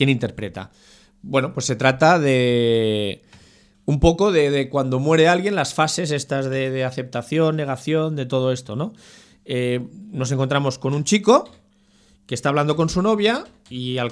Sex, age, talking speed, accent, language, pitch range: male, 40-59, 165 wpm, Spanish, Spanish, 130-175 Hz